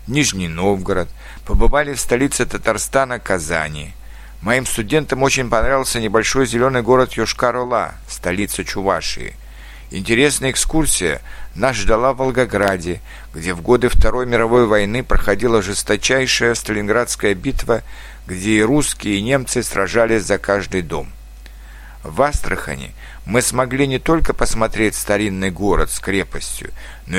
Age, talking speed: 60-79, 120 wpm